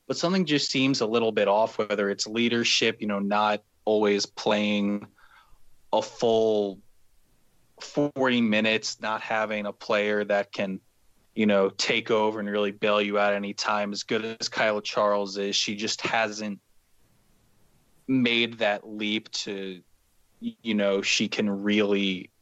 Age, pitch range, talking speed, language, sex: 20-39, 100-115 Hz, 145 wpm, English, male